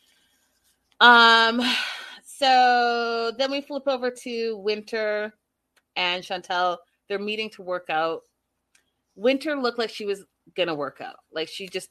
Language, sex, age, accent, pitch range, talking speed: English, female, 30-49, American, 160-245 Hz, 135 wpm